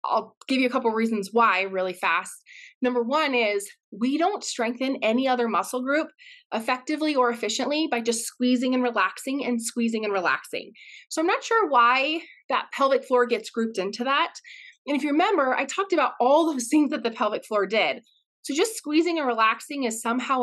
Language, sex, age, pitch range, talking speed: English, female, 20-39, 225-290 Hz, 195 wpm